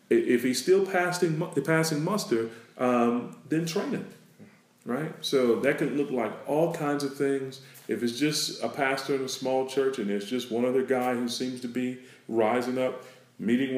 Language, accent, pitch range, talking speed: English, American, 115-140 Hz, 185 wpm